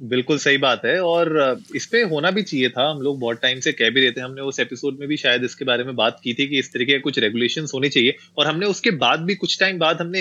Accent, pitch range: native, 125-150 Hz